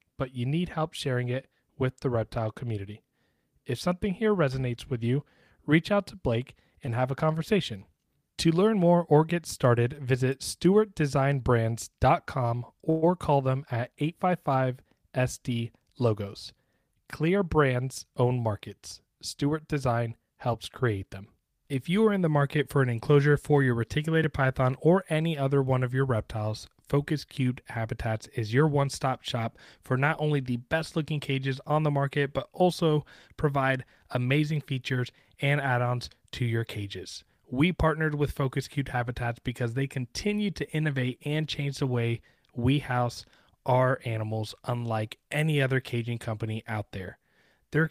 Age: 30-49